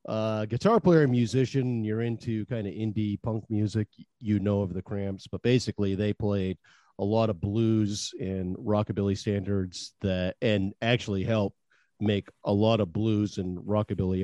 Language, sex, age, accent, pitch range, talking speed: English, male, 50-69, American, 85-110 Hz, 165 wpm